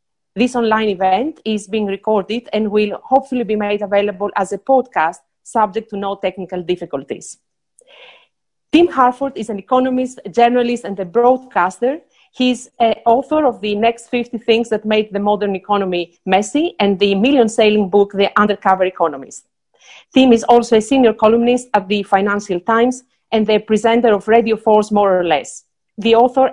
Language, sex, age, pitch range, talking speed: English, female, 40-59, 195-235 Hz, 165 wpm